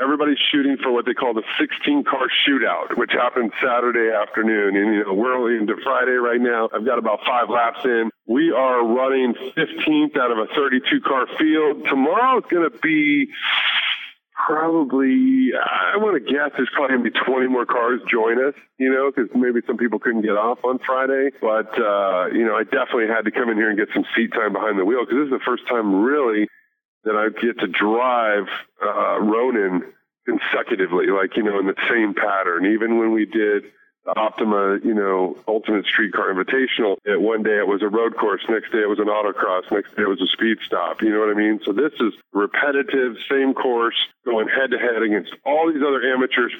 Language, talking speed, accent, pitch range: English, 205 wpm, American, 110-145 Hz